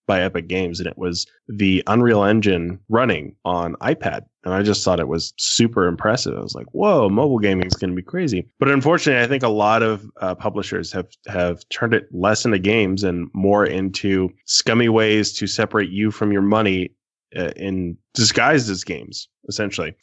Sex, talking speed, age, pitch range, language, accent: male, 190 wpm, 20-39, 95-115 Hz, English, American